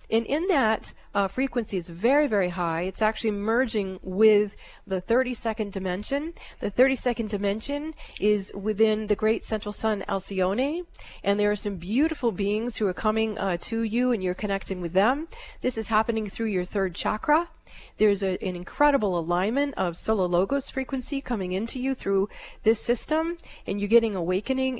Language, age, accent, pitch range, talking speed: English, 40-59, American, 195-250 Hz, 165 wpm